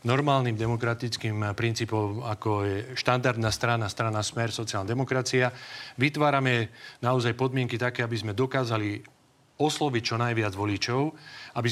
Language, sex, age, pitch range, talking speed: Slovak, male, 40-59, 115-135 Hz, 120 wpm